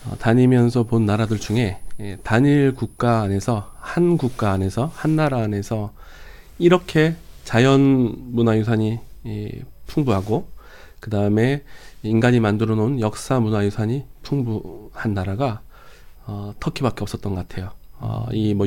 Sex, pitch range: male, 100-125 Hz